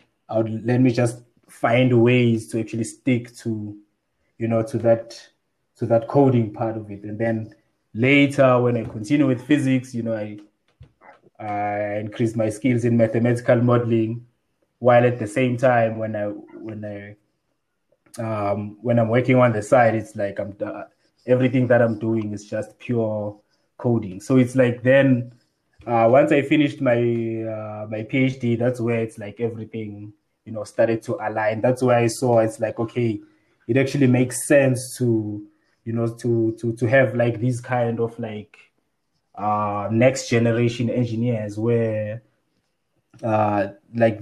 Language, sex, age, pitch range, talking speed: English, male, 20-39, 110-130 Hz, 160 wpm